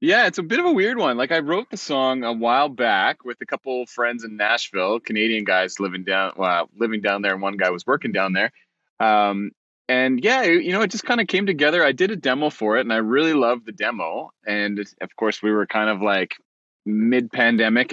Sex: male